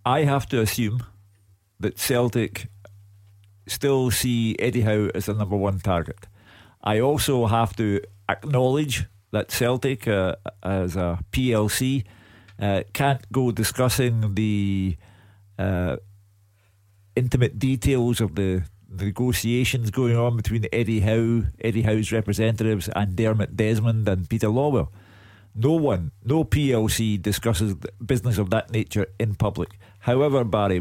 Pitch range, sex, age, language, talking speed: 100-120 Hz, male, 50-69, English, 125 wpm